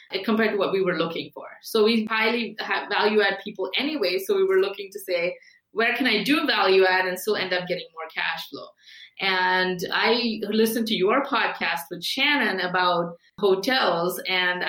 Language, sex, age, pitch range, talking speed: English, female, 20-39, 185-230 Hz, 175 wpm